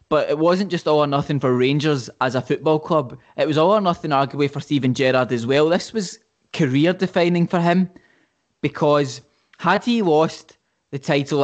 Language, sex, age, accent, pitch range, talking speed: English, male, 20-39, British, 135-160 Hz, 185 wpm